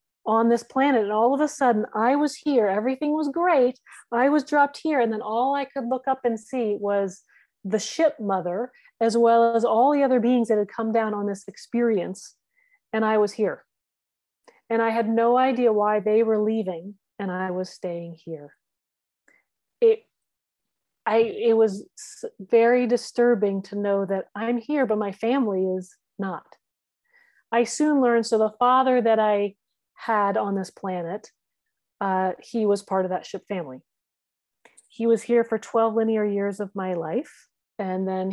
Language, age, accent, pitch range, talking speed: English, 40-59, American, 190-235 Hz, 175 wpm